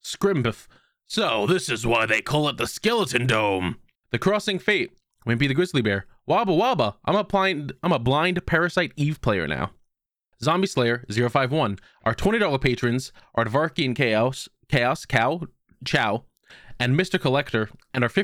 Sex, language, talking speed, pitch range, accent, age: male, English, 160 wpm, 115-150 Hz, American, 20-39